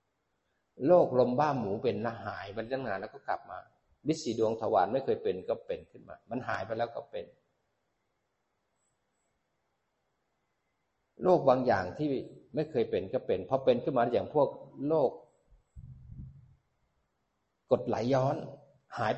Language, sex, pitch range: Thai, male, 120-150 Hz